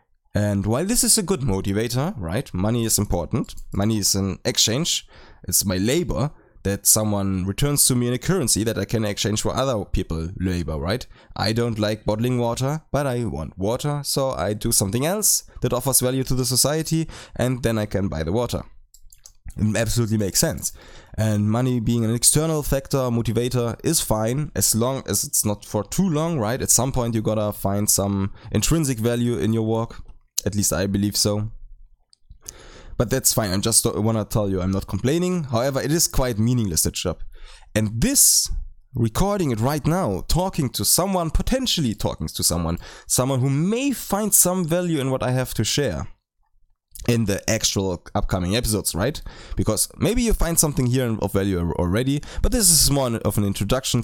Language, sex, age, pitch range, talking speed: English, male, 20-39, 100-135 Hz, 185 wpm